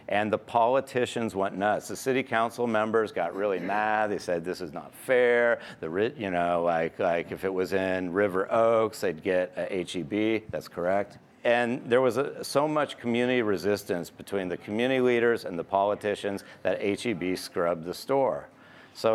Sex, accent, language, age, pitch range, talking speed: male, American, English, 50-69, 95-115 Hz, 175 wpm